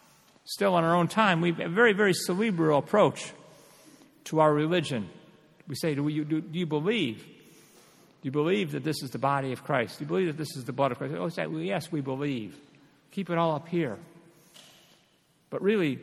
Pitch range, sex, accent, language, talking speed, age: 145-175 Hz, male, American, English, 215 wpm, 50-69